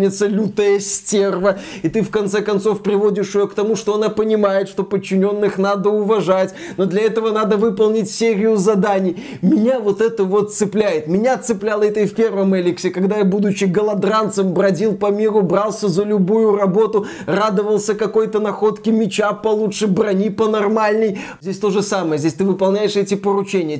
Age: 20-39